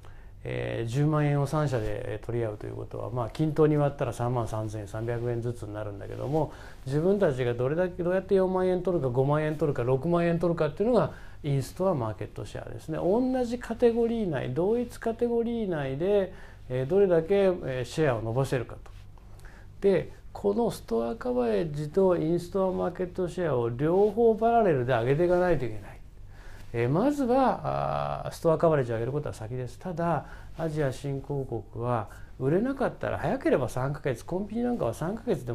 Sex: male